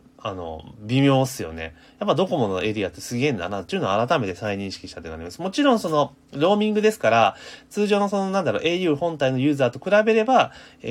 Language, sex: Japanese, male